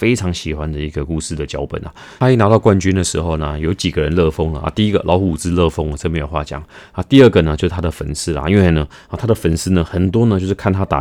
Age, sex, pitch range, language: 30-49, male, 80-95 Hz, Chinese